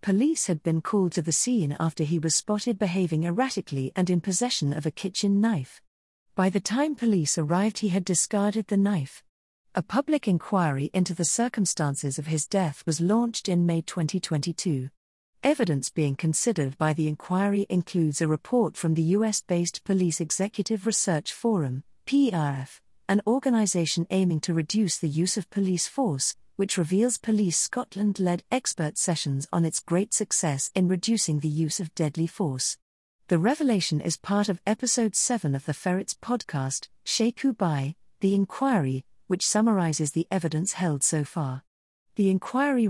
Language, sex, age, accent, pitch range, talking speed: English, female, 40-59, British, 160-210 Hz, 155 wpm